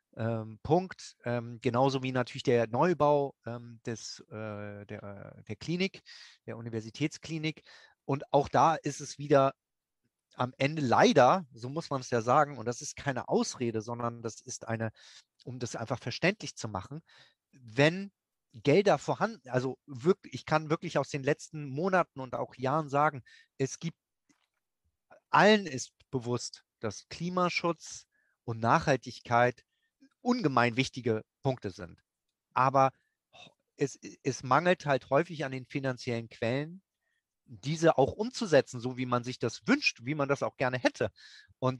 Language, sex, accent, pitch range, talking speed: German, male, German, 120-145 Hz, 145 wpm